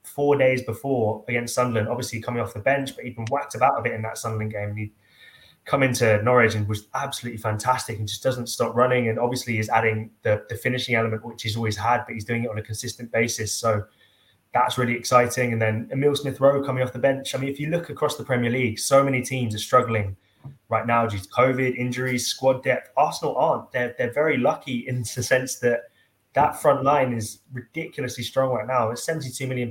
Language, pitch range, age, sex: English, 110-125 Hz, 20-39, male